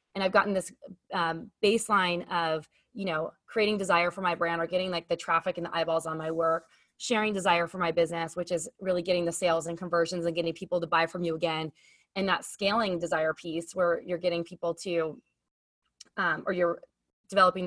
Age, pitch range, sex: 20-39, 170-200 Hz, female